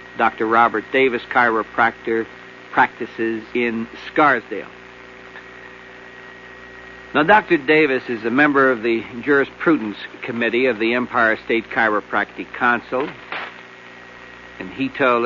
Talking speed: 100 wpm